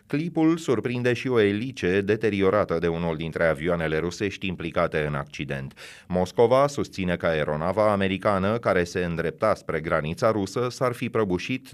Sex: male